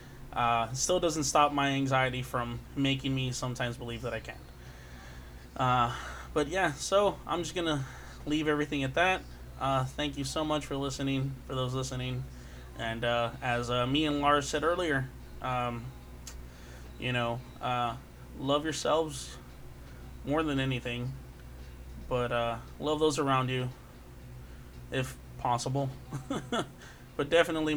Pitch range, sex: 120-145 Hz, male